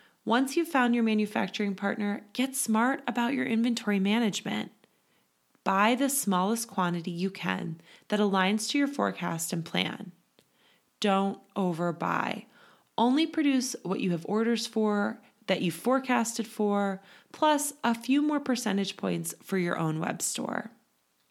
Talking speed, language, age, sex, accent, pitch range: 140 wpm, English, 20-39, female, American, 180-245 Hz